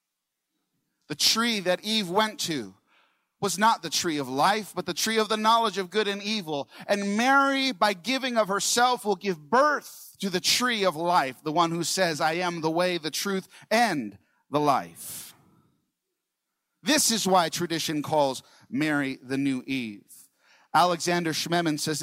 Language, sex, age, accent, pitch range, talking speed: English, male, 40-59, American, 125-195 Hz, 165 wpm